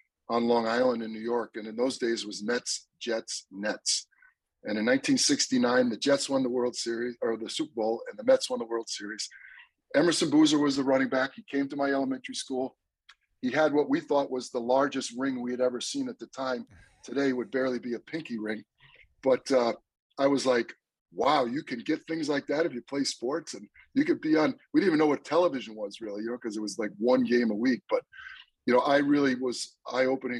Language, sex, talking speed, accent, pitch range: English, male, 230 wpm, American, 110-150 Hz